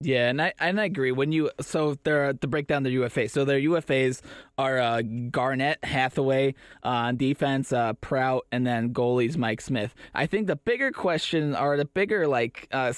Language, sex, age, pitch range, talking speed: English, male, 20-39, 125-155 Hz, 195 wpm